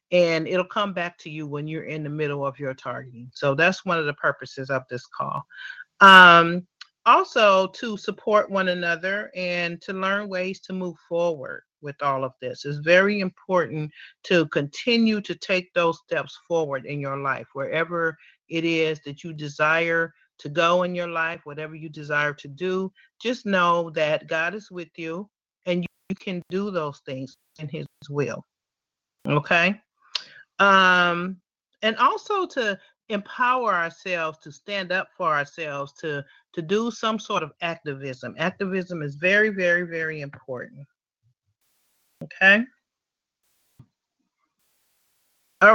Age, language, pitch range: 40-59, English, 155-195 Hz